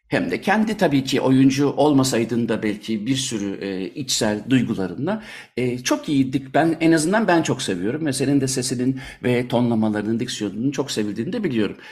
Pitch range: 120-165 Hz